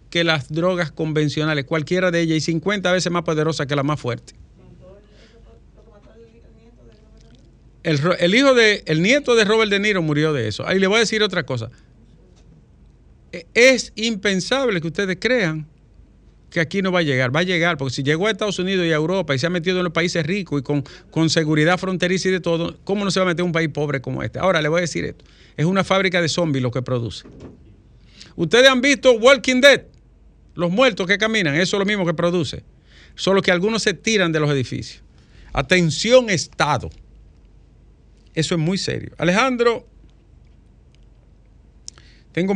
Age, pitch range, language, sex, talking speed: 50-69, 140-195 Hz, Spanish, male, 185 wpm